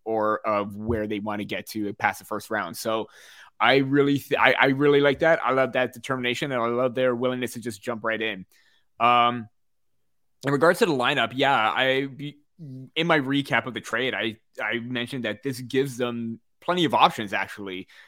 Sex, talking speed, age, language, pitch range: male, 200 wpm, 20-39, English, 110-130 Hz